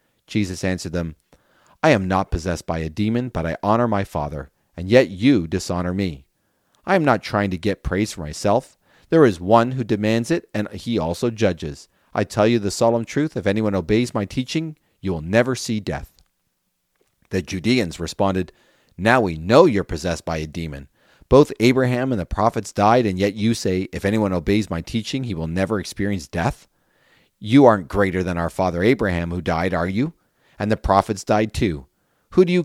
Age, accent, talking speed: 40-59, American, 195 wpm